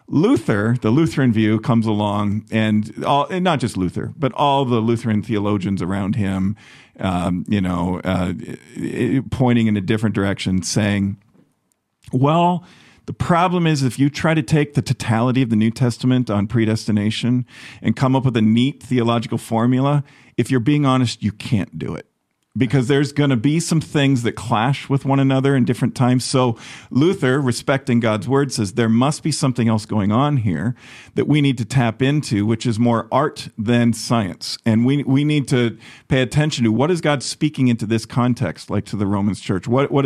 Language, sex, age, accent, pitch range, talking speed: English, male, 50-69, American, 105-135 Hz, 185 wpm